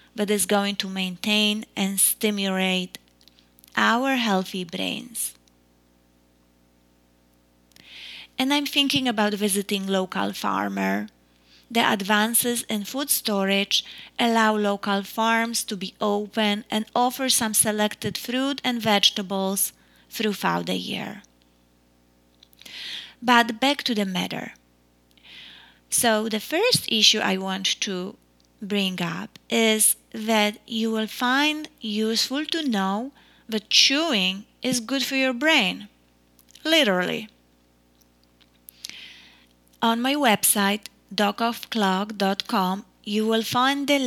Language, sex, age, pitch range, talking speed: English, female, 20-39, 175-230 Hz, 105 wpm